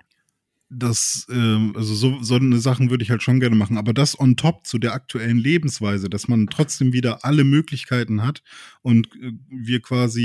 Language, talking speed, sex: German, 175 wpm, male